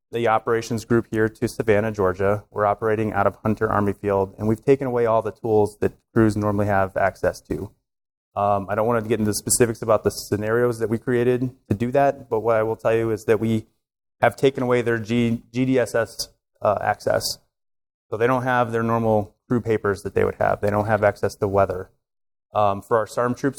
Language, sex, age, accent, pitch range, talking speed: English, male, 30-49, American, 105-120 Hz, 210 wpm